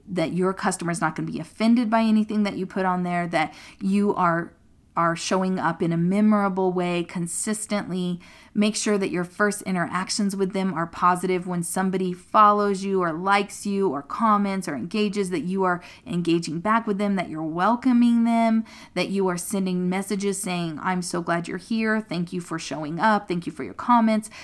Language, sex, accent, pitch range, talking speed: English, female, American, 175-210 Hz, 195 wpm